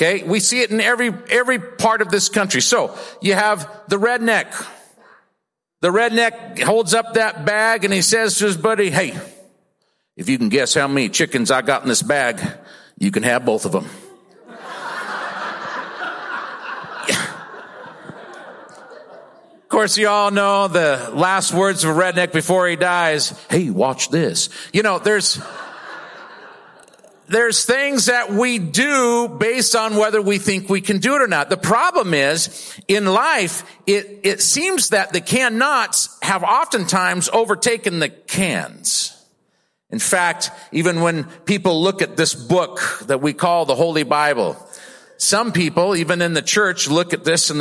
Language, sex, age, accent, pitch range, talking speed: English, male, 50-69, American, 175-225 Hz, 155 wpm